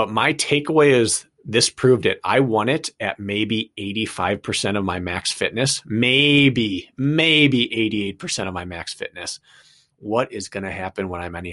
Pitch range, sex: 105-140 Hz, male